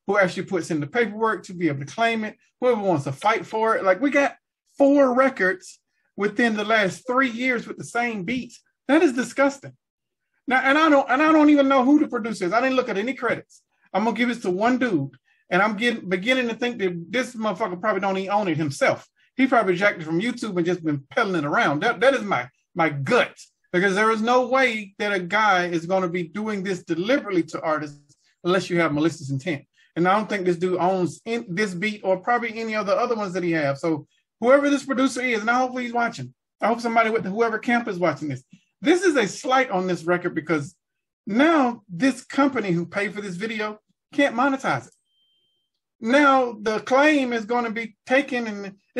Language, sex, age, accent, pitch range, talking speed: English, male, 30-49, American, 185-260 Hz, 225 wpm